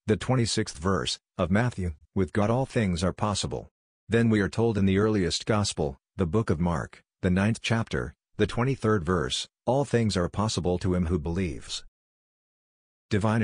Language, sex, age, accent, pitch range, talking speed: English, male, 50-69, American, 90-110 Hz, 170 wpm